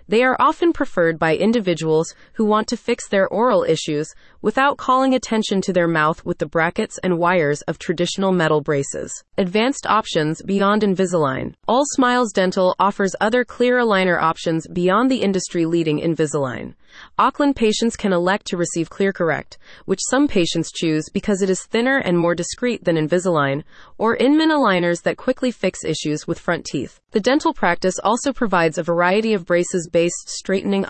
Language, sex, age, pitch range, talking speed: English, female, 30-49, 170-230 Hz, 165 wpm